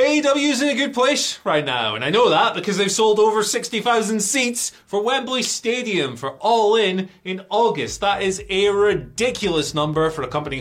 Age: 30-49